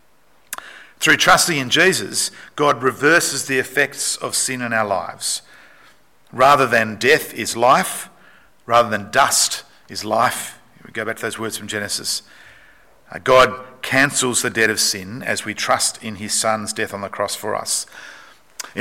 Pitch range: 110-130 Hz